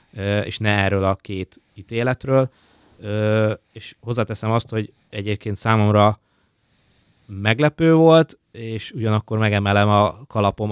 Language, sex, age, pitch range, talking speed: Hungarian, male, 20-39, 100-115 Hz, 105 wpm